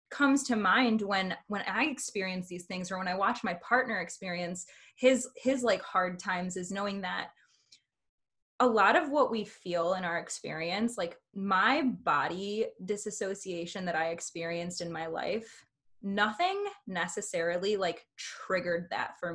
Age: 20-39